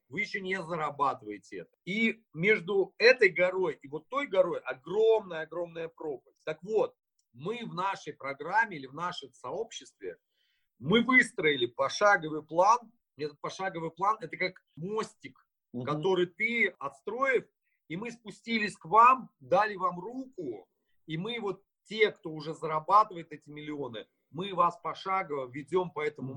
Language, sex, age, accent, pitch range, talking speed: Russian, male, 40-59, native, 145-210 Hz, 135 wpm